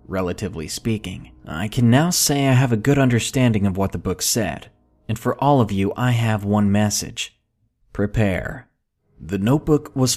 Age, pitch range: 20-39, 100-125 Hz